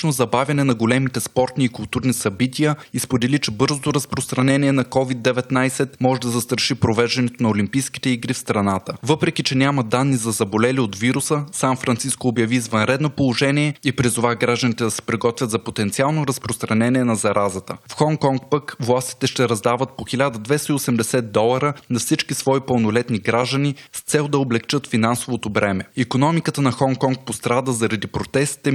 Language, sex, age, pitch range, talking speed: Bulgarian, male, 20-39, 115-140 Hz, 150 wpm